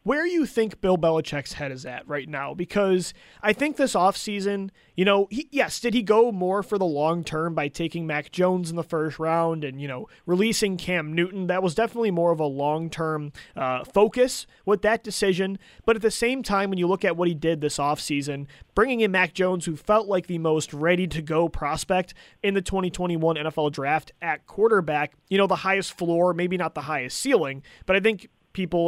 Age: 30-49